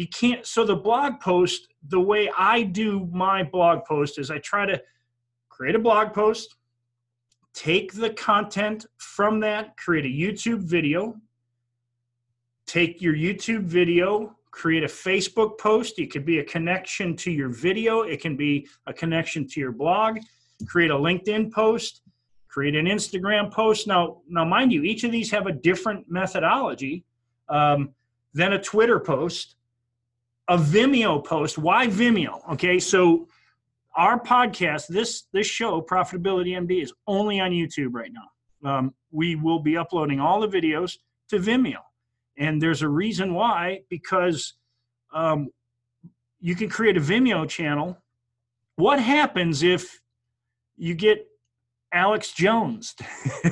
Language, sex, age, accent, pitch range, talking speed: English, male, 40-59, American, 145-210 Hz, 145 wpm